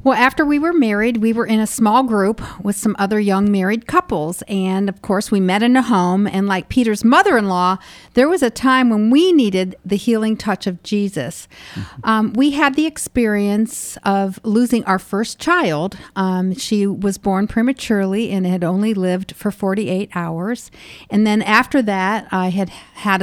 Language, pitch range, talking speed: English, 185-225 Hz, 180 wpm